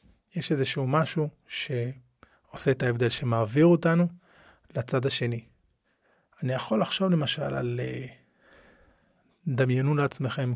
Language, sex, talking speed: Hebrew, male, 95 wpm